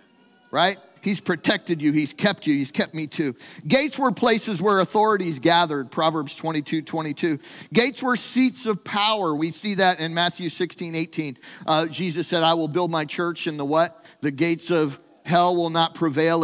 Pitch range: 160-205 Hz